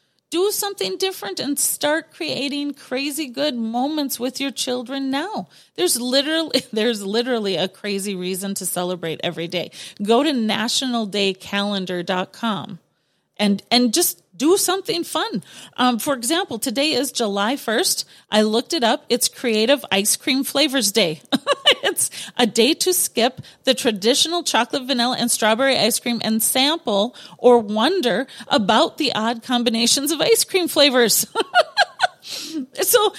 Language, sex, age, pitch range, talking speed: English, female, 30-49, 215-305 Hz, 135 wpm